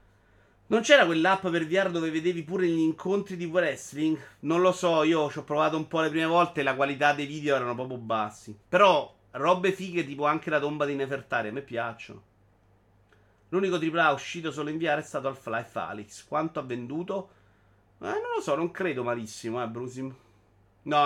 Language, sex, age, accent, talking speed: Italian, male, 30-49, native, 195 wpm